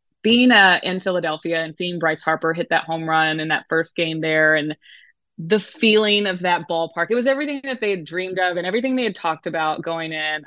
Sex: female